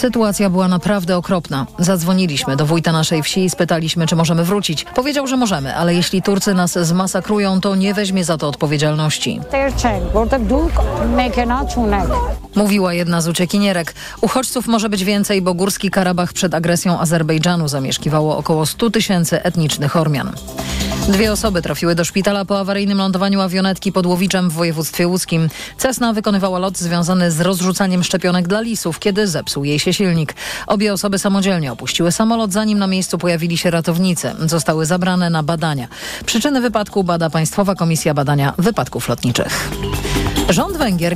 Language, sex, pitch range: Polish, female, 165-205 Hz